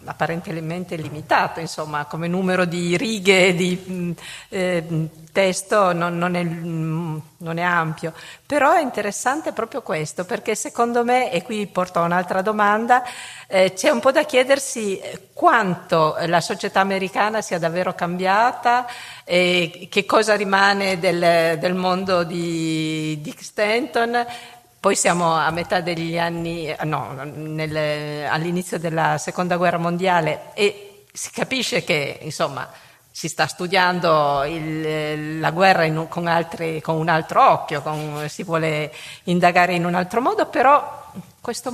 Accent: native